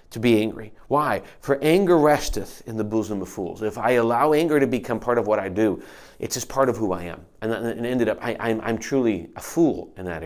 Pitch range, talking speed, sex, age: 105-125 Hz, 245 wpm, male, 40-59